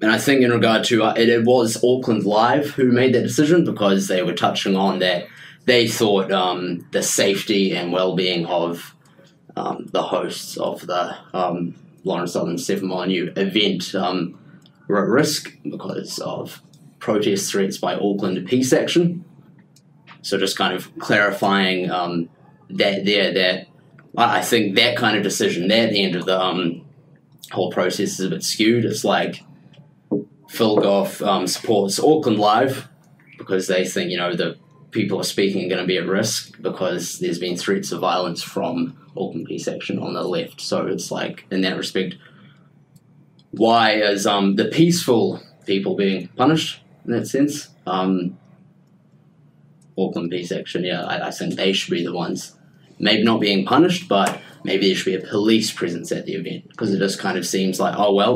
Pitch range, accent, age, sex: 95-145 Hz, Australian, 20-39, male